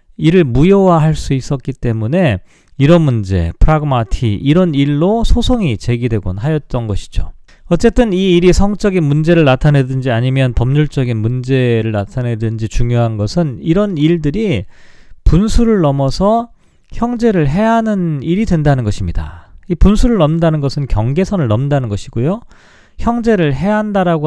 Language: Korean